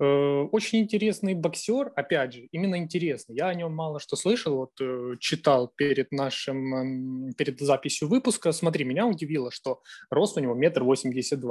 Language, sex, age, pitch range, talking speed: Ukrainian, male, 20-39, 130-165 Hz, 145 wpm